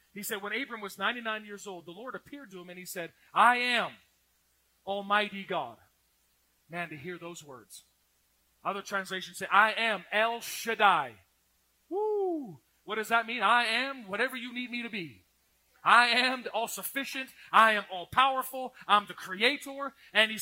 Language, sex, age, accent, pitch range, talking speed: English, male, 40-59, American, 180-230 Hz, 170 wpm